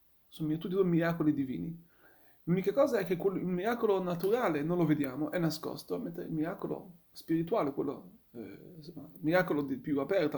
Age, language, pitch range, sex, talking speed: 30-49, Italian, 170-230 Hz, male, 145 wpm